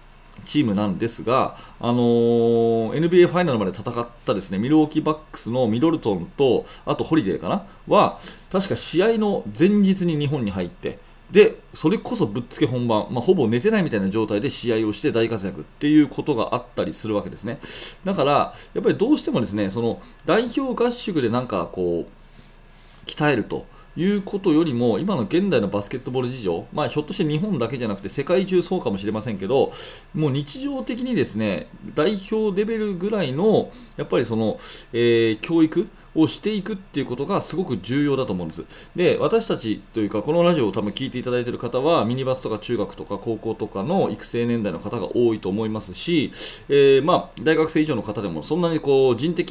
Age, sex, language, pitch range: 30-49, male, Japanese, 110-175 Hz